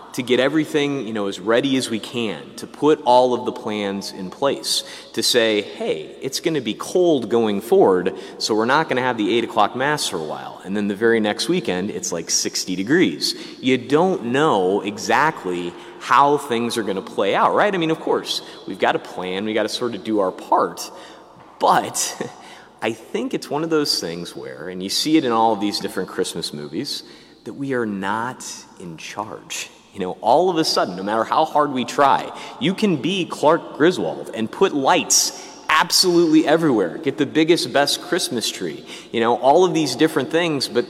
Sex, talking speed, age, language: male, 200 wpm, 30-49, English